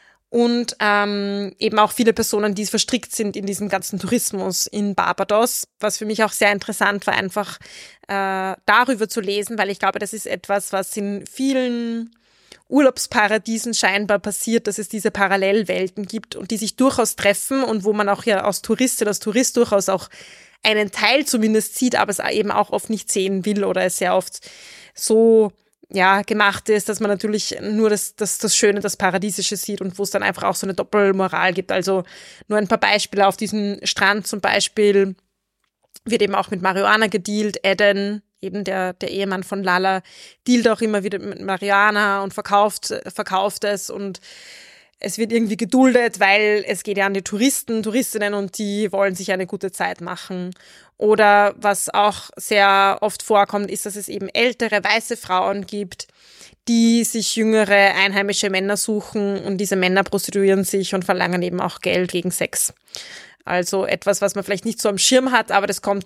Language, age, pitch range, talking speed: German, 20-39, 195-215 Hz, 180 wpm